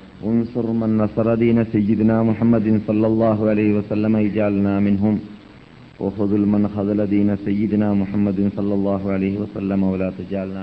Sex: male